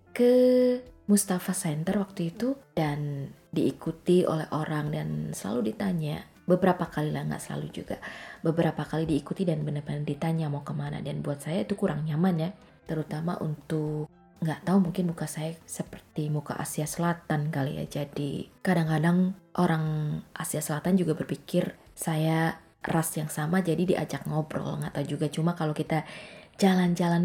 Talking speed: 150 wpm